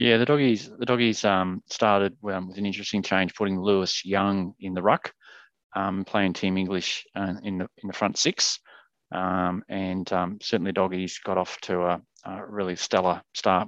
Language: English